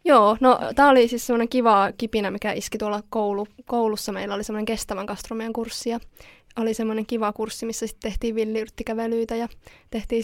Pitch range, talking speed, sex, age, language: 210-235 Hz, 170 wpm, female, 20-39, Finnish